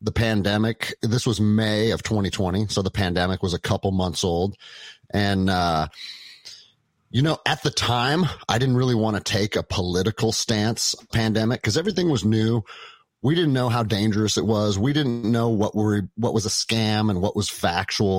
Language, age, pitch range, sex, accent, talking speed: English, 30-49, 95-120 Hz, male, American, 185 wpm